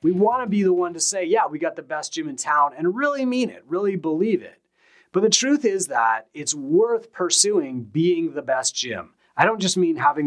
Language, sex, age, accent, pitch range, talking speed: English, male, 30-49, American, 130-190 Hz, 235 wpm